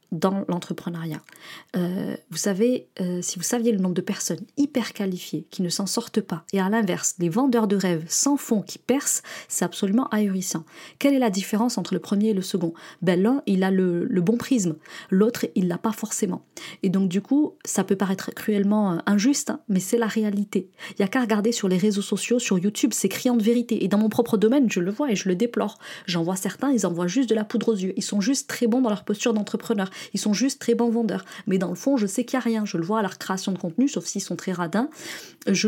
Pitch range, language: 175-220 Hz, French